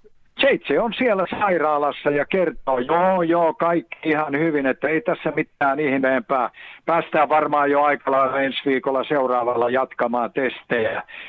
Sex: male